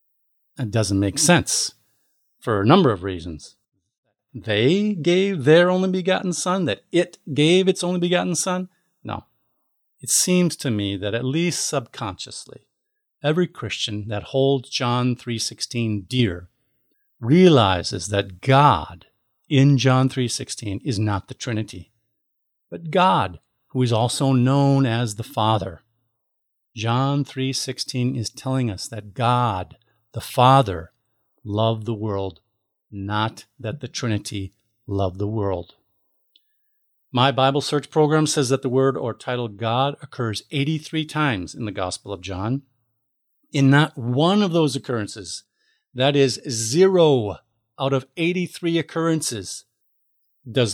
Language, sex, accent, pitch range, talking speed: English, male, American, 110-150 Hz, 130 wpm